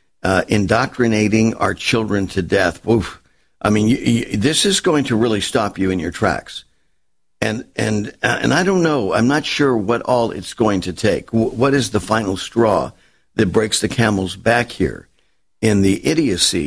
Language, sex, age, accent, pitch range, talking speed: English, male, 50-69, American, 105-130 Hz, 185 wpm